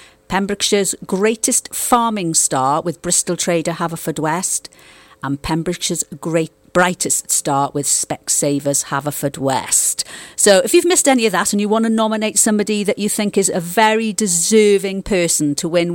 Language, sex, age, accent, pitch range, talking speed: English, female, 40-59, British, 150-195 Hz, 155 wpm